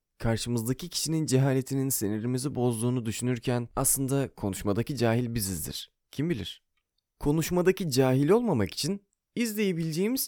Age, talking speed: 30-49, 100 wpm